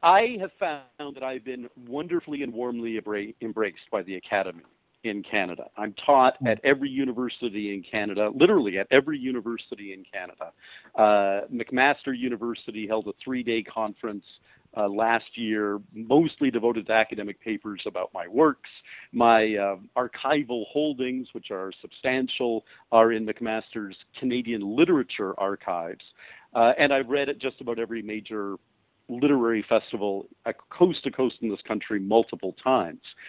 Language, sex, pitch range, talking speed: English, male, 110-135 Hz, 140 wpm